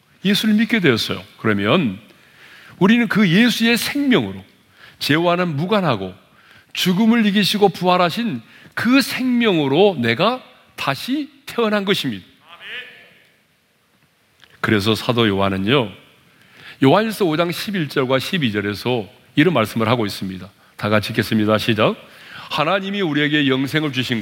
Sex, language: male, Korean